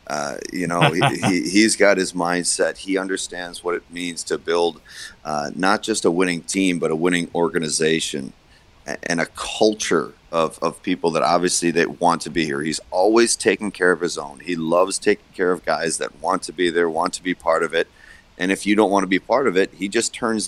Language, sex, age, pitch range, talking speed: English, male, 30-49, 85-100 Hz, 225 wpm